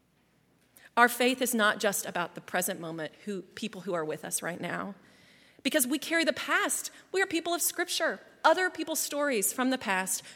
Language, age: English, 30-49